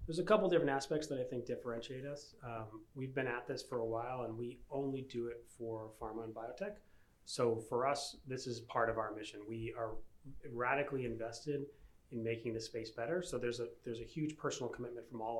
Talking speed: 215 wpm